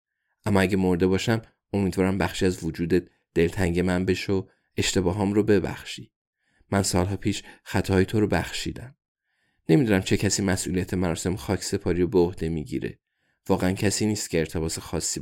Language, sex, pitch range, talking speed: Persian, male, 90-105 Hz, 145 wpm